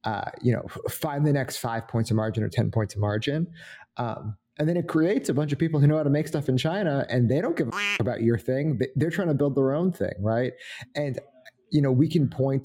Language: English